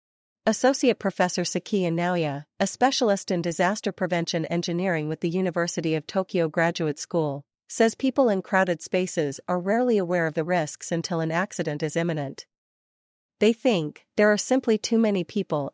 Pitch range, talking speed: 165-210 Hz, 155 wpm